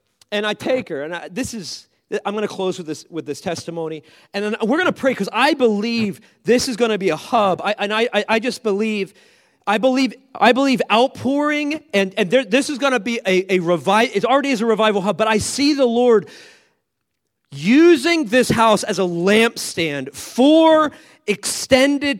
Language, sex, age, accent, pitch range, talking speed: English, male, 40-59, American, 215-300 Hz, 190 wpm